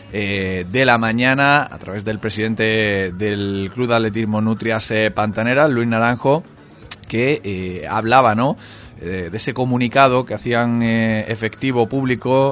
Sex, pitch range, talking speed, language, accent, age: male, 105-120 Hz, 145 wpm, Spanish, Spanish, 30-49